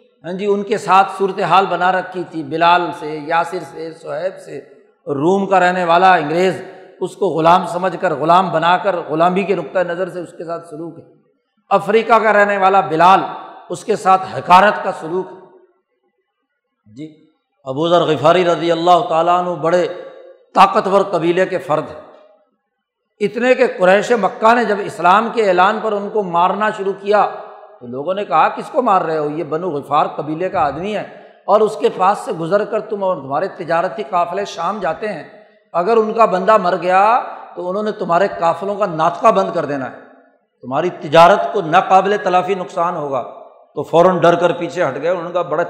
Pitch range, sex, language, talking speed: 170-210 Hz, male, Urdu, 190 wpm